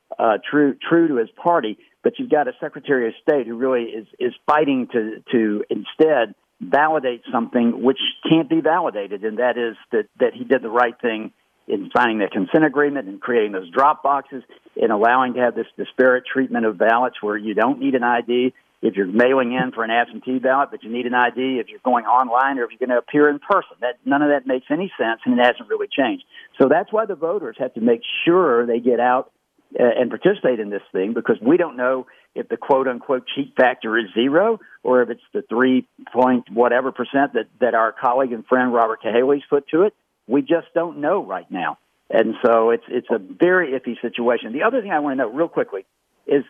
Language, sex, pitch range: English, male, 120-150 Hz